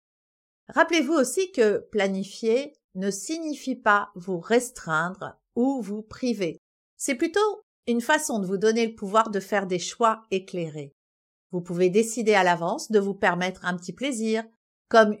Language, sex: French, female